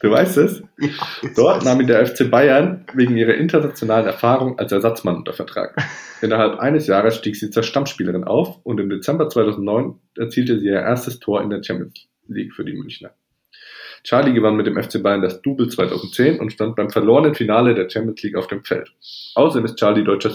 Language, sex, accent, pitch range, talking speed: German, male, German, 100-120 Hz, 190 wpm